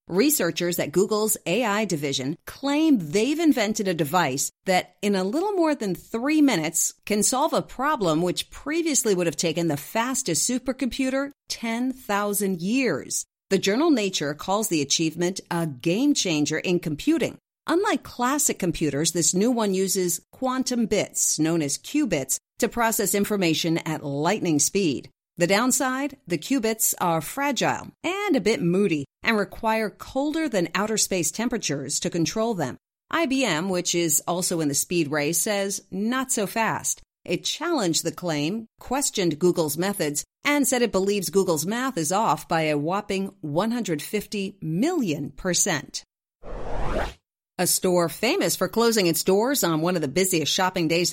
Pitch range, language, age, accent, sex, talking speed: 165-240 Hz, English, 50-69, American, female, 150 wpm